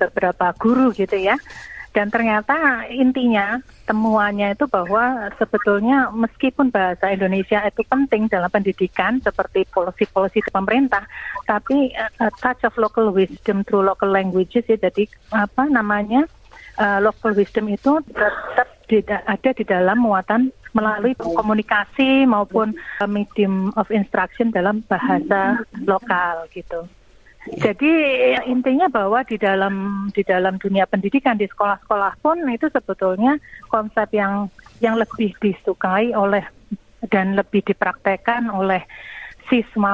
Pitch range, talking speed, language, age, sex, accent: 195-240 Hz, 120 wpm, Indonesian, 40-59, female, native